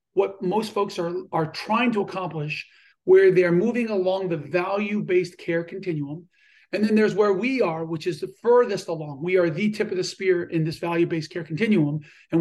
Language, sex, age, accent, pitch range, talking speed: English, male, 40-59, American, 170-210 Hz, 195 wpm